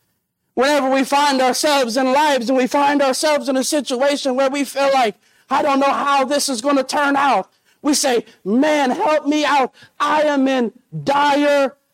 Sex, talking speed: male, 185 wpm